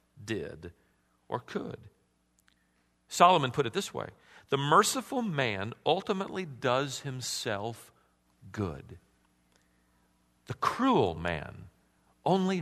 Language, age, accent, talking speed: English, 40-59, American, 90 wpm